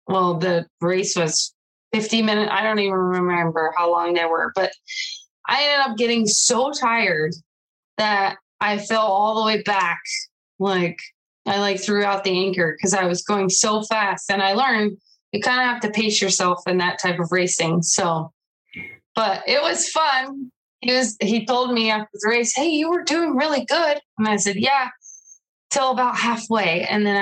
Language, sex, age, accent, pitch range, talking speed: English, female, 20-39, American, 185-240 Hz, 185 wpm